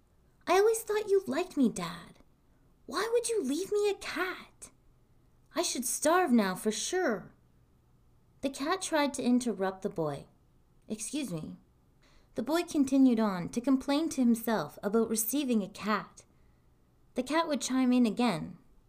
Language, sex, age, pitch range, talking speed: English, female, 20-39, 215-325 Hz, 150 wpm